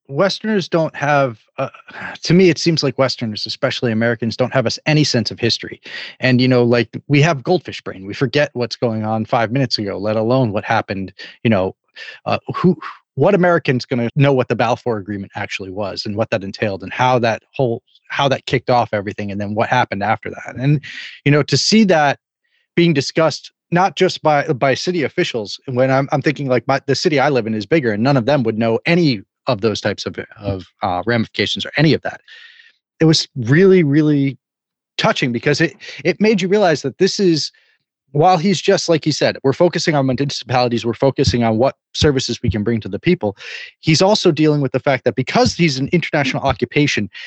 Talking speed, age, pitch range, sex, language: 210 wpm, 30-49, 120-160 Hz, male, English